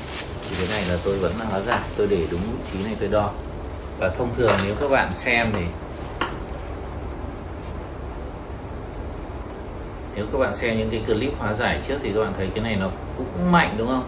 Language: English